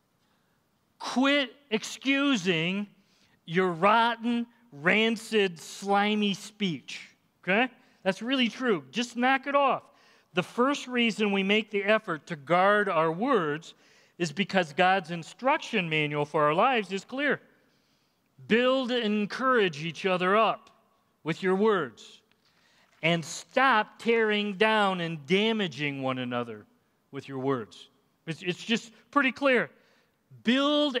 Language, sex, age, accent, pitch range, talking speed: English, male, 40-59, American, 165-225 Hz, 120 wpm